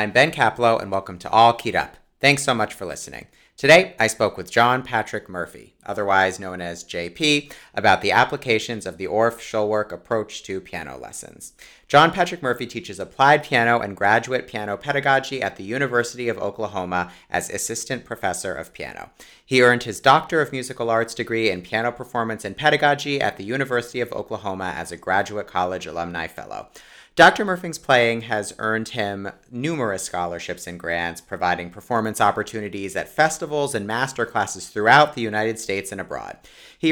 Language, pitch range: English, 100-135 Hz